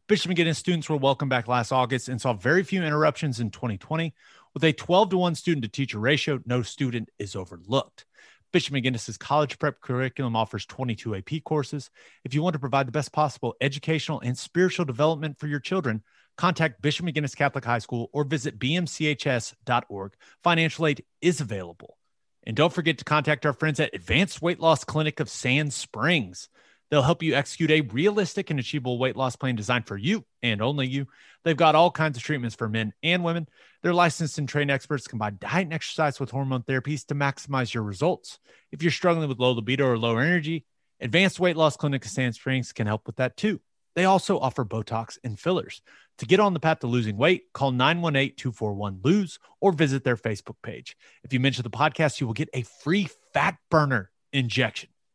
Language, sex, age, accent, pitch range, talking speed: English, male, 30-49, American, 125-160 Hz, 195 wpm